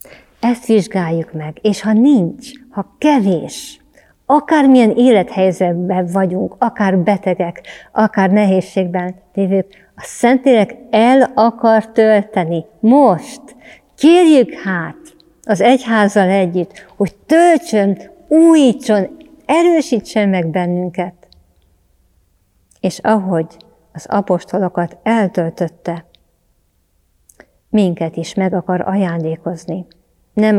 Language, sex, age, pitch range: Hungarian, female, 50-69, 175-220 Hz